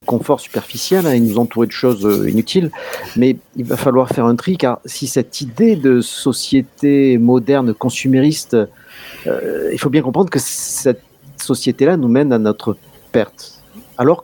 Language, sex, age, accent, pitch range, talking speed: French, male, 50-69, French, 115-140 Hz, 160 wpm